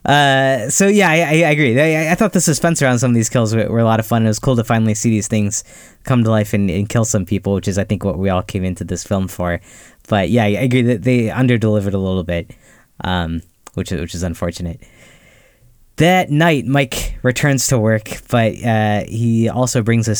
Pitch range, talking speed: 100-125 Hz, 230 wpm